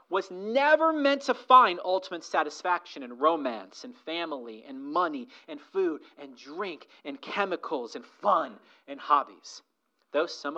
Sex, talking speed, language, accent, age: male, 140 wpm, English, American, 40-59